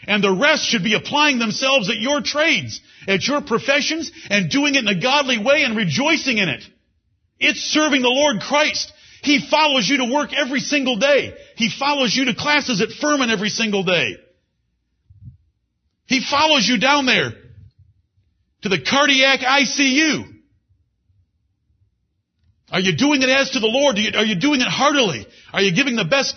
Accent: American